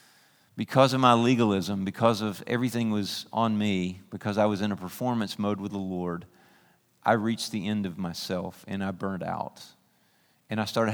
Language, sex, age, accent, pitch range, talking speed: English, male, 40-59, American, 95-115 Hz, 180 wpm